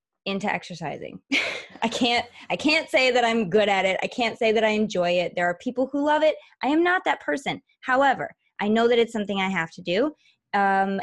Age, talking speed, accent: 20-39, 225 wpm, American